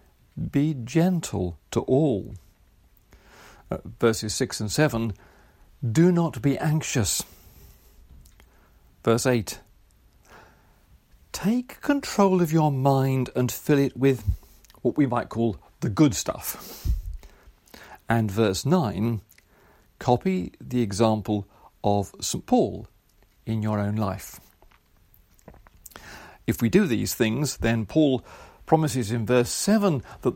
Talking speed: 110 wpm